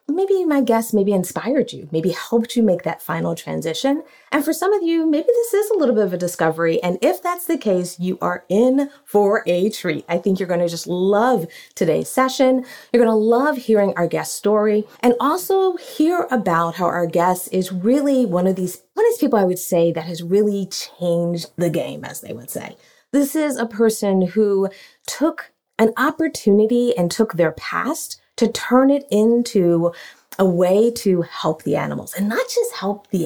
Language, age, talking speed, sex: English, 30-49, 200 wpm, female